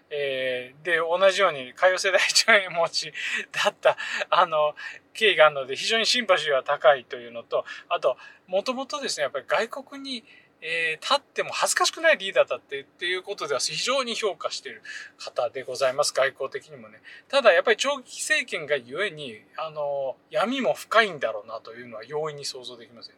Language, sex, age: Japanese, male, 20-39